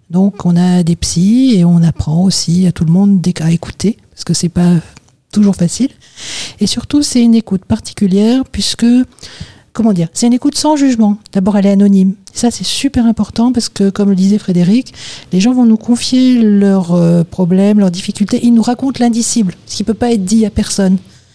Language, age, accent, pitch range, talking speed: French, 50-69, French, 190-230 Hz, 200 wpm